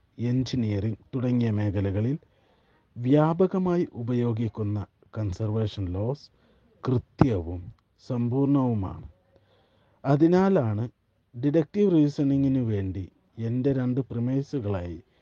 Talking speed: 65 wpm